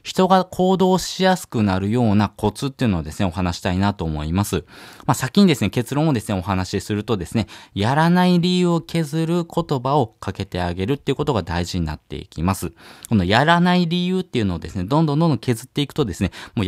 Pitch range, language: 95-140 Hz, Japanese